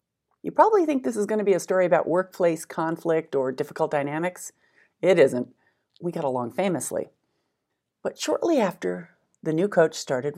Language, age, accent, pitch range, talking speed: English, 40-59, American, 135-185 Hz, 160 wpm